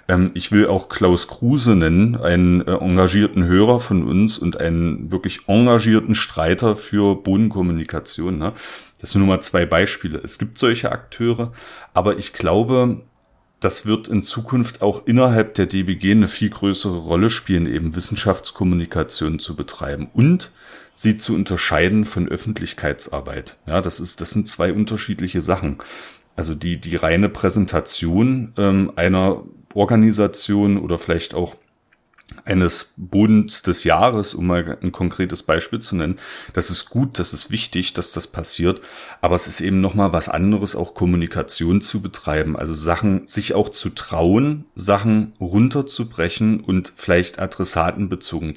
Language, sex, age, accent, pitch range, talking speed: German, male, 40-59, German, 85-105 Hz, 140 wpm